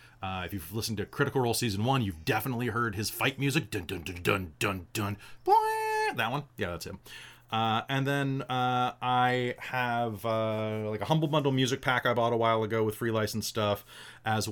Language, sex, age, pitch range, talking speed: English, male, 30-49, 100-125 Hz, 205 wpm